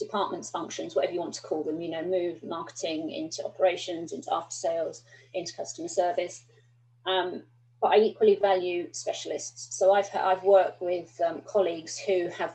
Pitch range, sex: 170-205 Hz, female